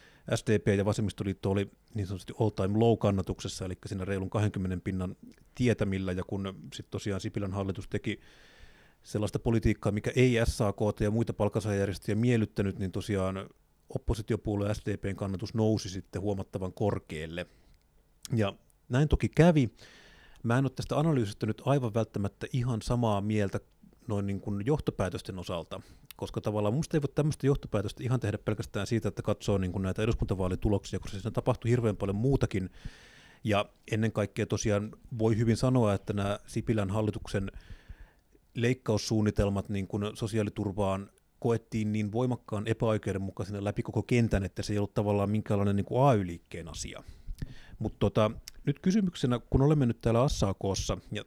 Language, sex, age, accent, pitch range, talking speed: Finnish, male, 30-49, native, 100-115 Hz, 145 wpm